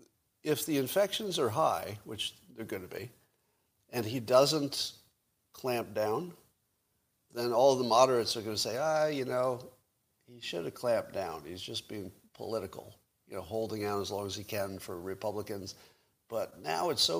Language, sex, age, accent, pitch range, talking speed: English, male, 50-69, American, 105-130 Hz, 175 wpm